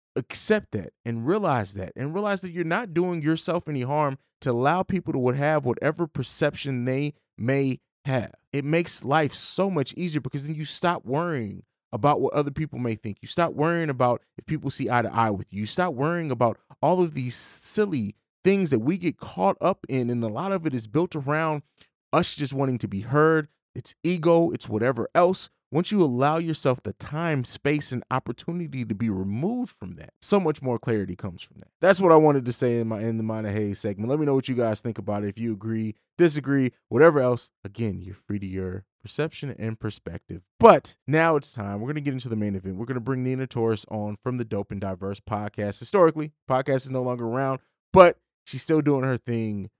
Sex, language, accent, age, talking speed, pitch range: male, English, American, 30-49, 220 wpm, 110-155 Hz